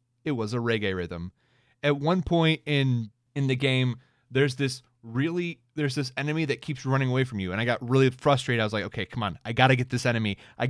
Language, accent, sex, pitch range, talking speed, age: English, American, male, 120-145 Hz, 230 wpm, 30-49